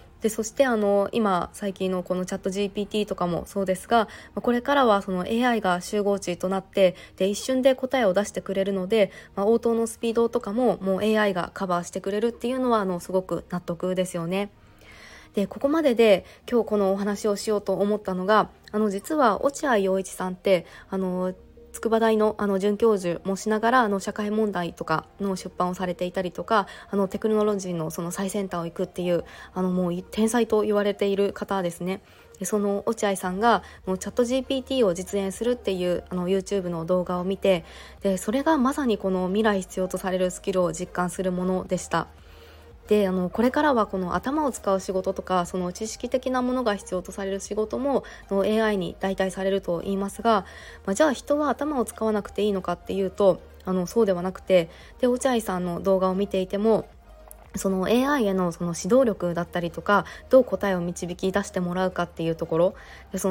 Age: 20-39